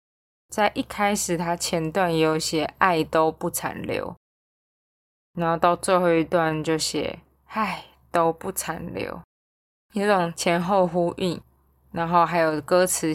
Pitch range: 160-185 Hz